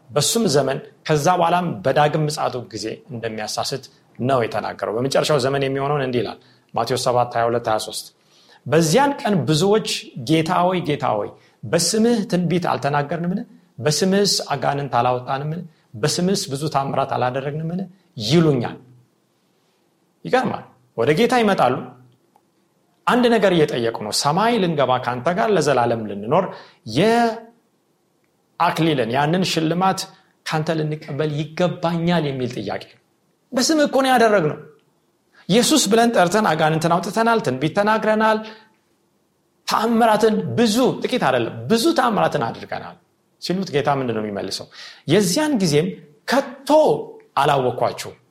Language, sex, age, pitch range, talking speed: Amharic, male, 40-59, 140-215 Hz, 100 wpm